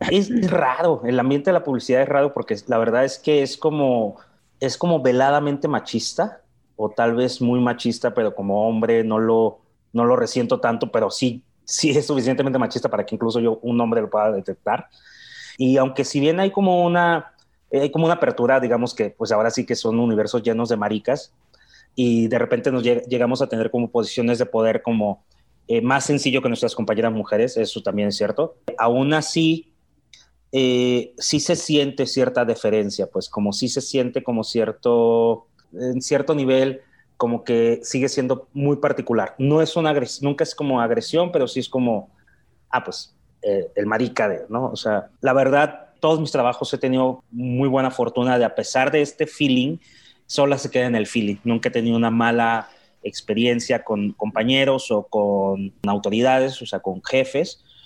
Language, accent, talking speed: Spanish, Mexican, 185 wpm